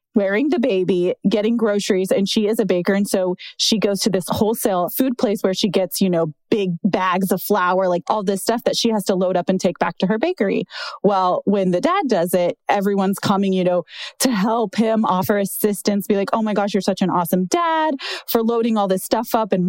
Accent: American